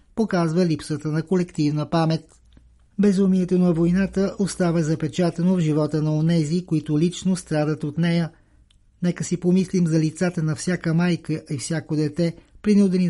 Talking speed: 140 wpm